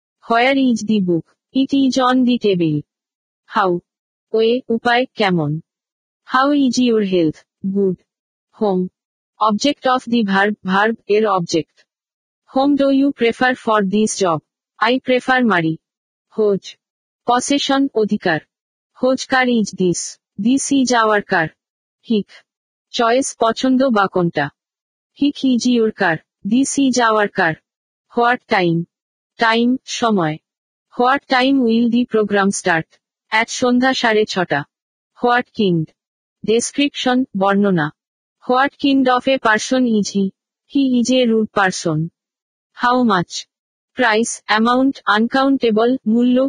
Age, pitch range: 50-69, 200-255 Hz